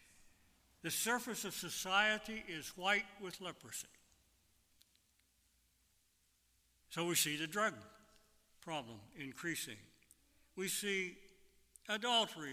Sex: male